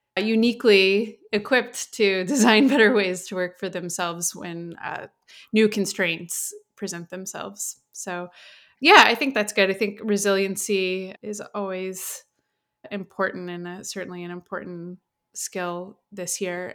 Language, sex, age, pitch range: English, female, 20-39, 180-210 Hz